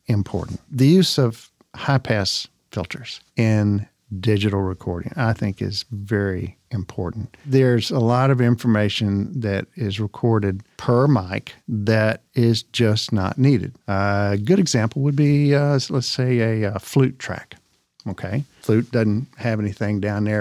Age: 50-69